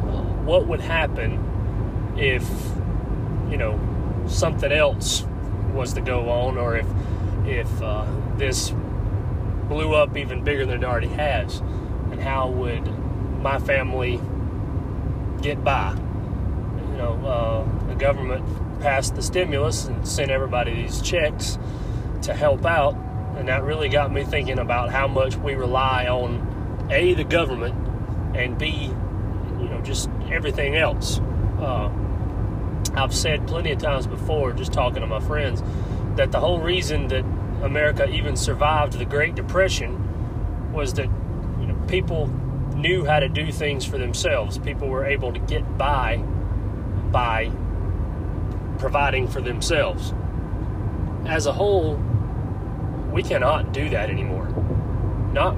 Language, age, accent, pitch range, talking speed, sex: English, 30-49, American, 95-120 Hz, 135 wpm, male